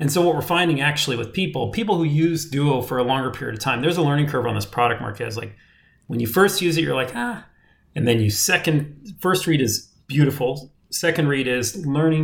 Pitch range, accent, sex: 120-155 Hz, American, male